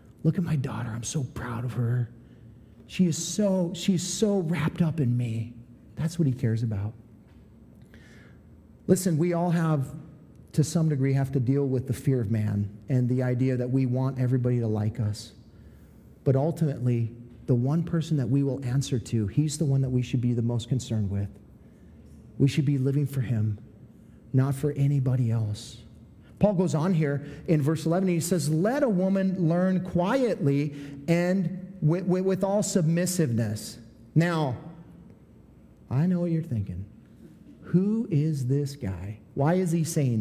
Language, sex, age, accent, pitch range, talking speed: English, male, 40-59, American, 120-180 Hz, 170 wpm